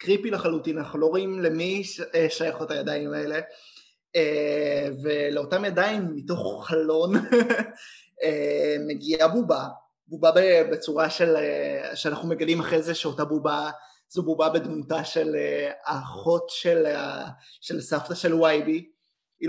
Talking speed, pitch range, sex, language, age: 110 wpm, 150-175 Hz, male, Hebrew, 20-39